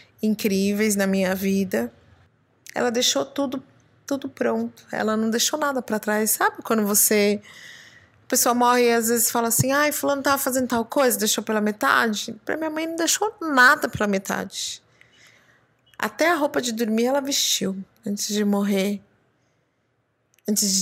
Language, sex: Portuguese, female